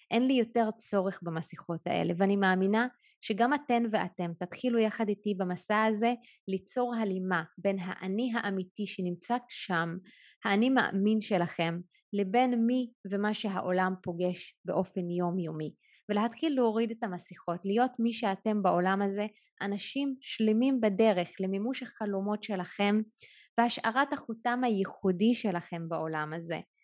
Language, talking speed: Hebrew, 120 wpm